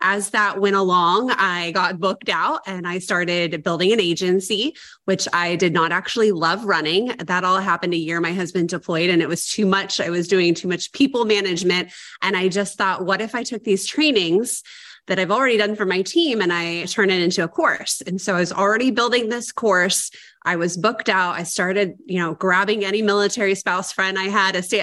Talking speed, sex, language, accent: 220 wpm, female, English, American